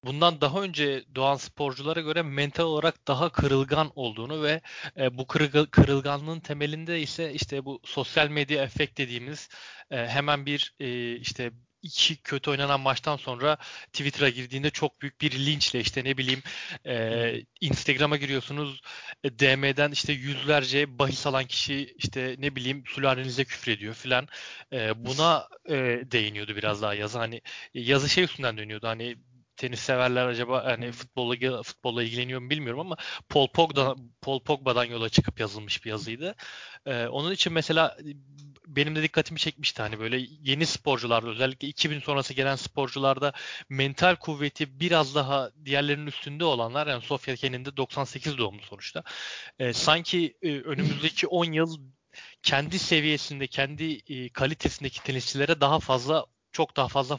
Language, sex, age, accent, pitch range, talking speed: Turkish, male, 30-49, native, 125-150 Hz, 135 wpm